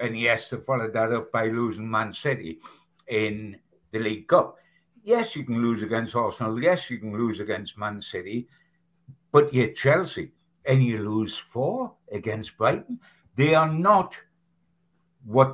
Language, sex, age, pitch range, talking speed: English, male, 60-79, 120-165 Hz, 155 wpm